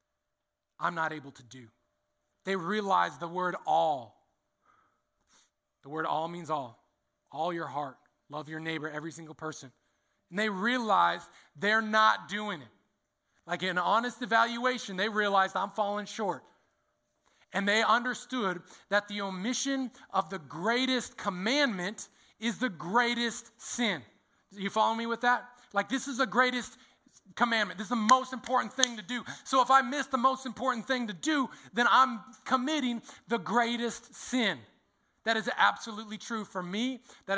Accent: American